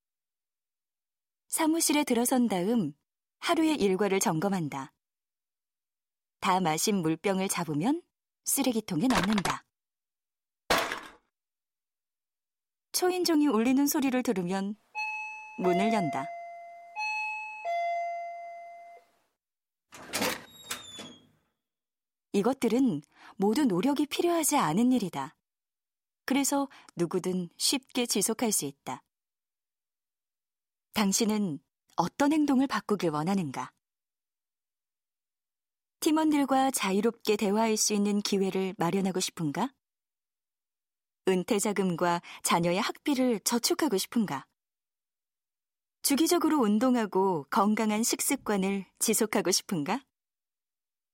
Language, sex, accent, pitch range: Korean, female, native, 195-285 Hz